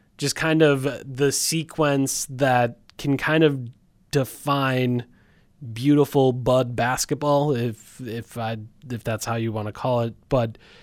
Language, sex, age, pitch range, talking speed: English, male, 20-39, 130-155 Hz, 140 wpm